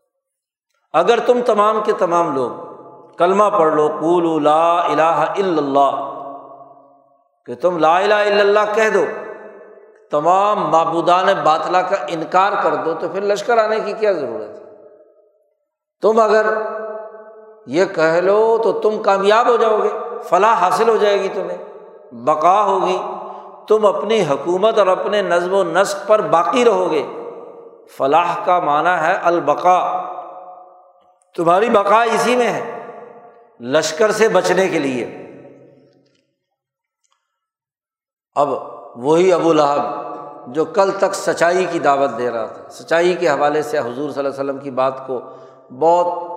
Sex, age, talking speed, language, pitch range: male, 60-79, 140 wpm, Urdu, 155-215 Hz